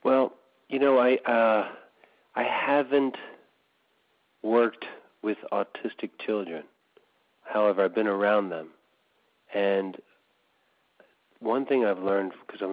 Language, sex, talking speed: English, male, 110 wpm